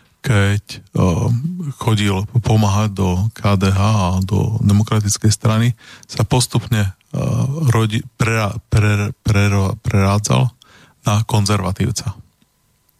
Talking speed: 65 wpm